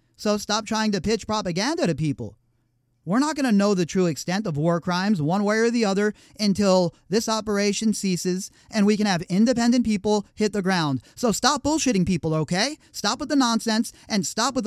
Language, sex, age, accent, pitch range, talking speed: English, male, 40-59, American, 165-225 Hz, 200 wpm